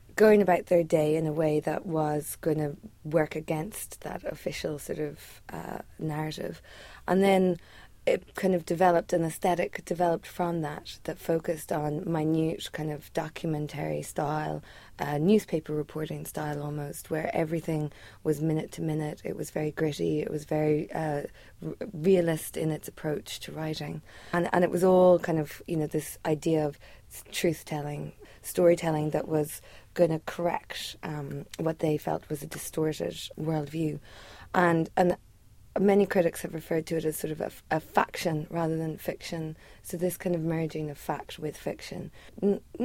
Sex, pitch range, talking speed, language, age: female, 150-175 Hz, 165 wpm, English, 20-39